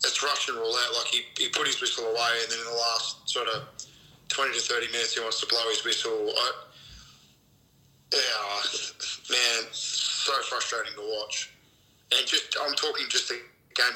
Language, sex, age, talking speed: English, male, 20-39, 175 wpm